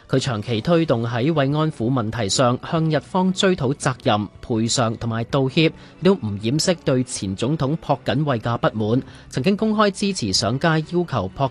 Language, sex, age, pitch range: Chinese, male, 30-49, 115-160 Hz